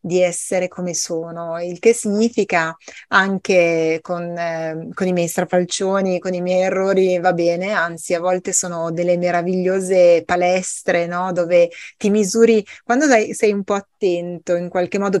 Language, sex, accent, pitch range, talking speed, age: Italian, female, native, 175-225 Hz, 145 wpm, 30-49